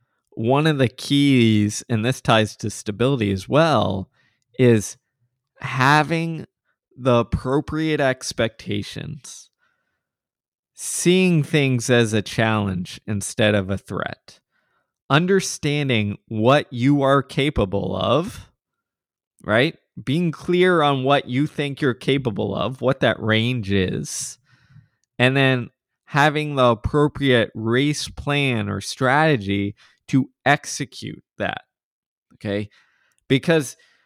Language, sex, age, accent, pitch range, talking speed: English, male, 20-39, American, 120-150 Hz, 105 wpm